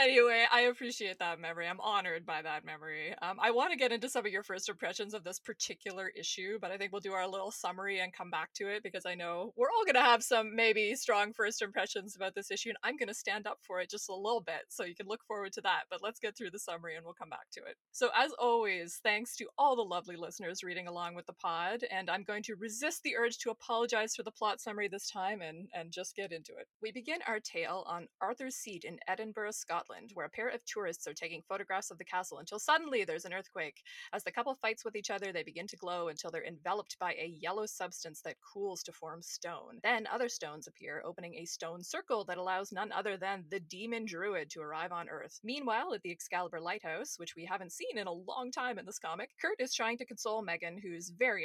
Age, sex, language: 20-39, female, English